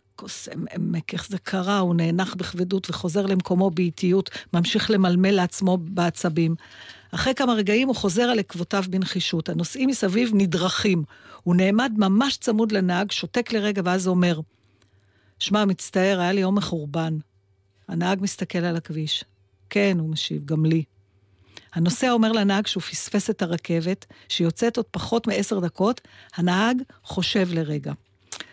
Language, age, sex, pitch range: Hebrew, 50-69, female, 165-215 Hz